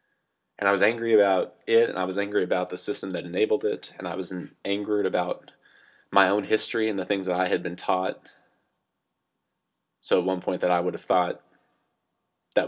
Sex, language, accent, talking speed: male, English, American, 200 wpm